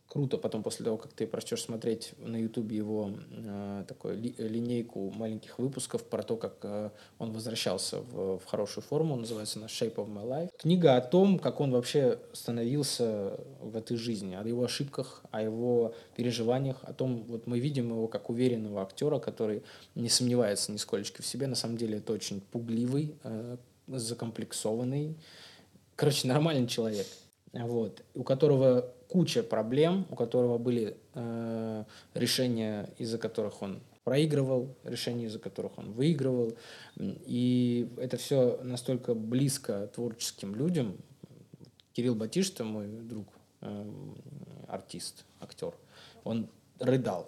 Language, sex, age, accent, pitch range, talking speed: Russian, male, 20-39, native, 110-130 Hz, 140 wpm